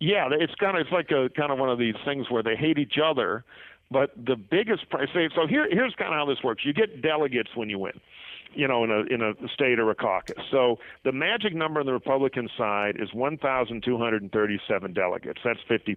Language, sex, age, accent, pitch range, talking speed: English, male, 50-69, American, 125-160 Hz, 240 wpm